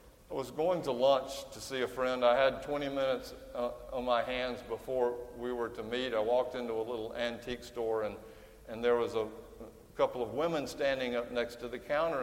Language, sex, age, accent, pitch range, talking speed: English, male, 50-69, American, 120-135 Hz, 215 wpm